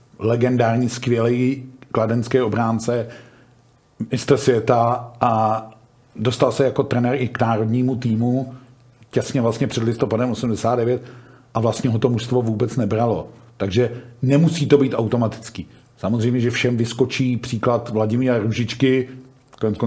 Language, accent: Czech, native